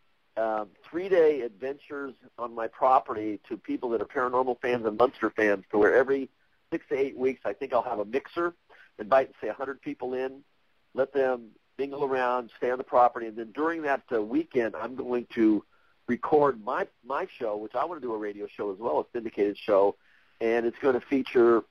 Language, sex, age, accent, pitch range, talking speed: English, male, 50-69, American, 115-135 Hz, 200 wpm